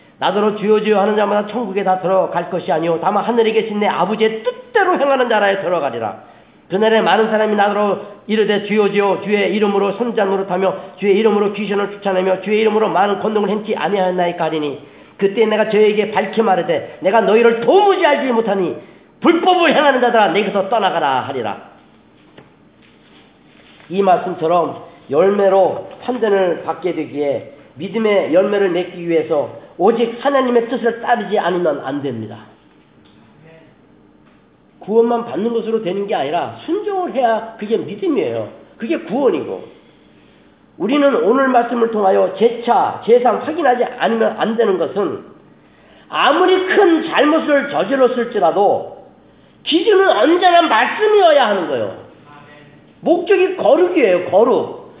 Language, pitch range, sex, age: Korean, 195-270 Hz, male, 40-59